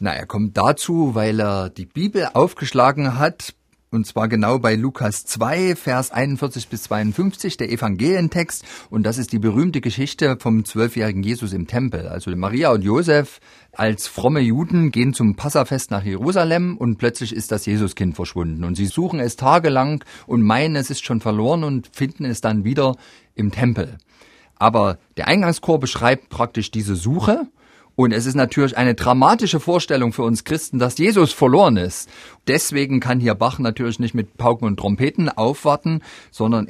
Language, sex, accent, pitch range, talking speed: German, male, German, 110-145 Hz, 165 wpm